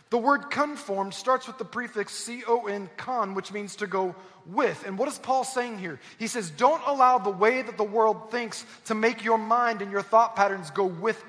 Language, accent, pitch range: English, American, 190-240 Hz